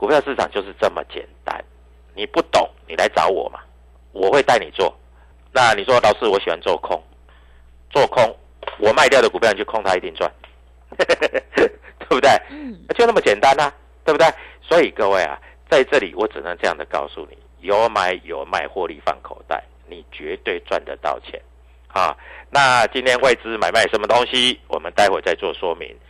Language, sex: Chinese, male